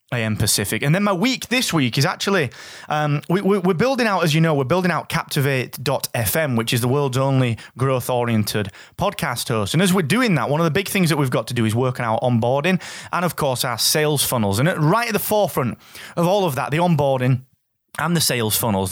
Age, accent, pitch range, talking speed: 30-49, British, 120-165 Hz, 220 wpm